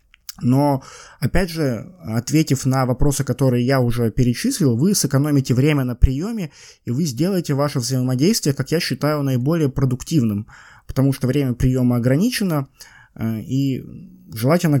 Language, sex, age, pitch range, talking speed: Russian, male, 20-39, 125-155 Hz, 130 wpm